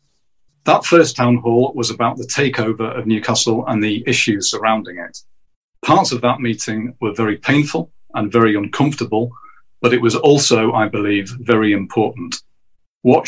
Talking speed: 155 wpm